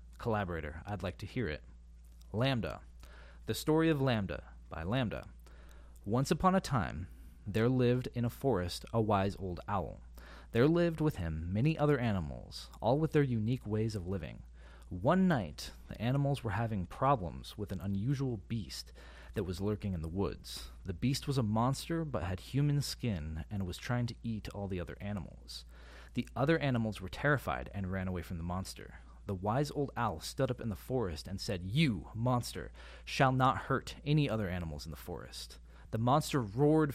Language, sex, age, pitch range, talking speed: English, male, 30-49, 75-120 Hz, 180 wpm